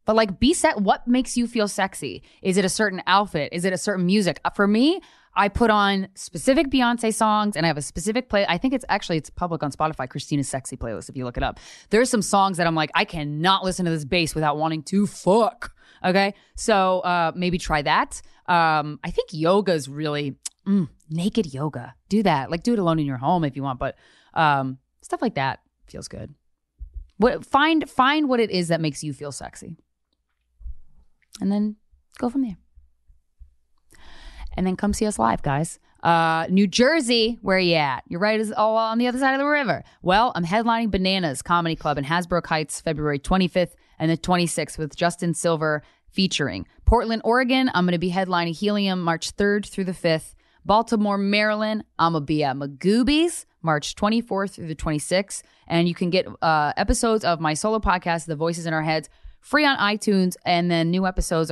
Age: 20-39